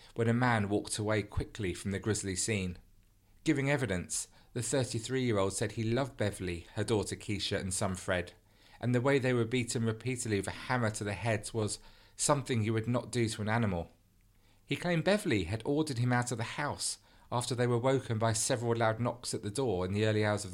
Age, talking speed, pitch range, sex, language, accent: 40-59, 210 wpm, 100-120 Hz, male, English, British